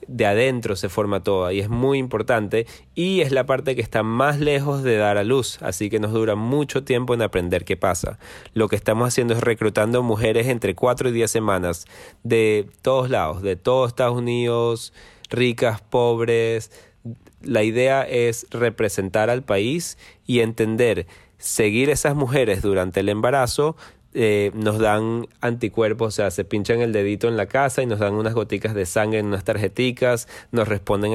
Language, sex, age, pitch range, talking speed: Spanish, male, 30-49, 105-125 Hz, 175 wpm